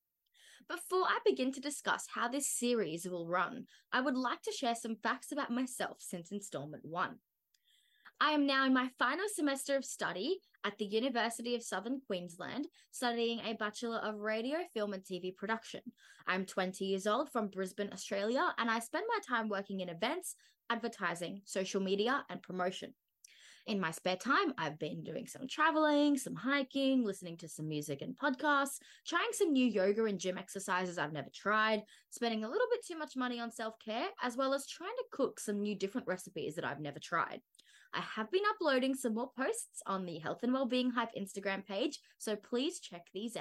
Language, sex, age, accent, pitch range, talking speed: English, female, 20-39, Australian, 195-280 Hz, 185 wpm